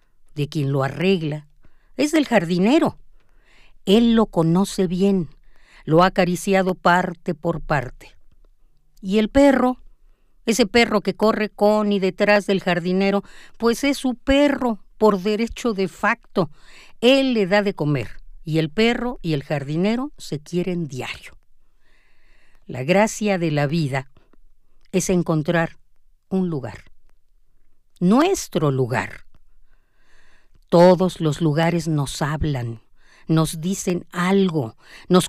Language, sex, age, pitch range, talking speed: Spanish, female, 50-69, 155-215 Hz, 120 wpm